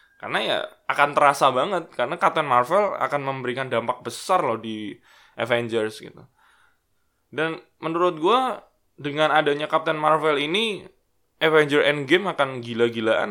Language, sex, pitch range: English, male, 115-155 Hz